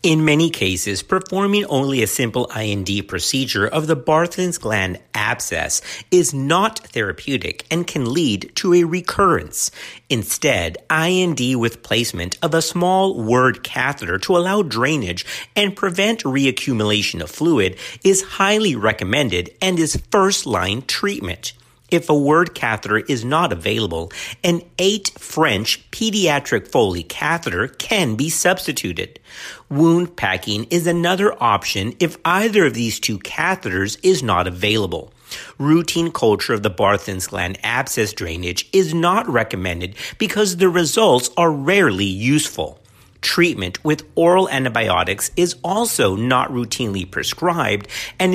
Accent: American